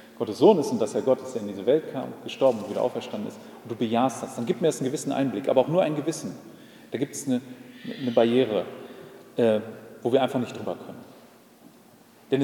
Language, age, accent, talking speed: German, 40-59, German, 230 wpm